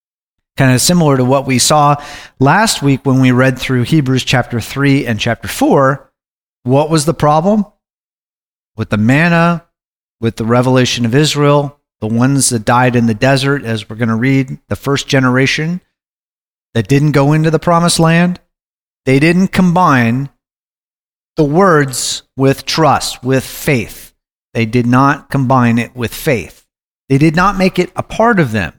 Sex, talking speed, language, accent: male, 165 wpm, English, American